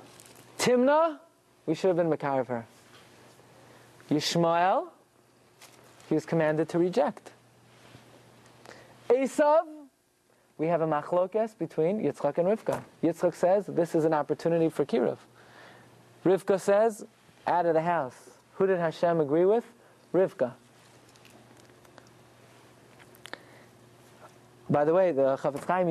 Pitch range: 150-220 Hz